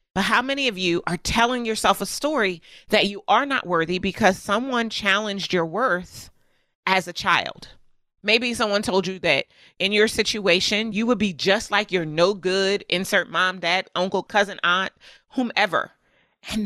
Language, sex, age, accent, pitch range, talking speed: English, female, 30-49, American, 190-240 Hz, 170 wpm